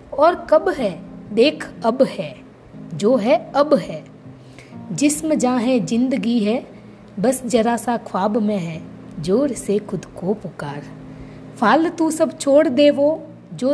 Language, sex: Hindi, female